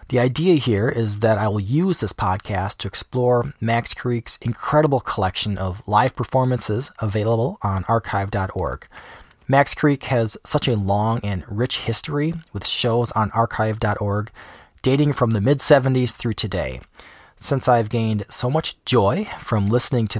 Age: 30-49